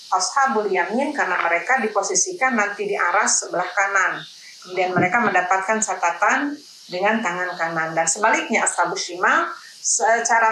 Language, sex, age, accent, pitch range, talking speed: Indonesian, female, 40-59, native, 180-225 Hz, 125 wpm